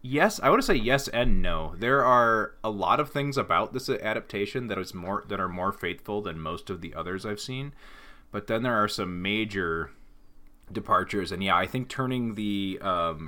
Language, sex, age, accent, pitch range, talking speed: English, male, 20-39, American, 85-115 Hz, 205 wpm